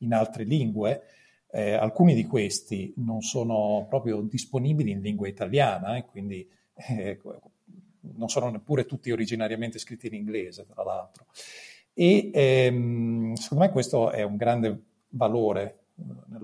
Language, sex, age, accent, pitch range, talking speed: Italian, male, 40-59, native, 110-140 Hz, 140 wpm